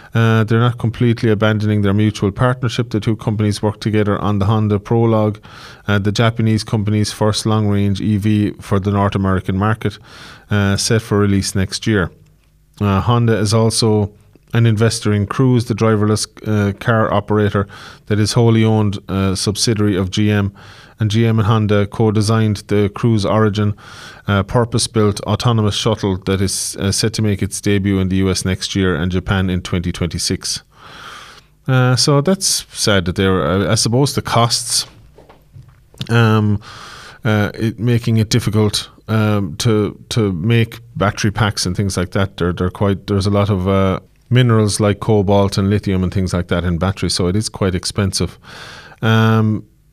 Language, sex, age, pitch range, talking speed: English, male, 20-39, 100-115 Hz, 170 wpm